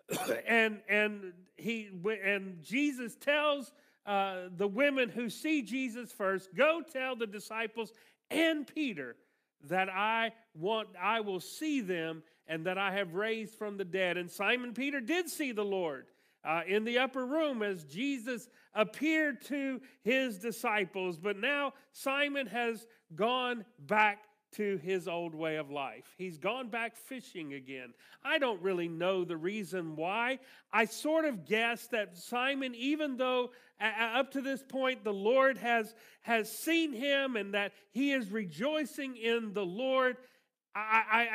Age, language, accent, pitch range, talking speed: 40-59, English, American, 200-265 Hz, 150 wpm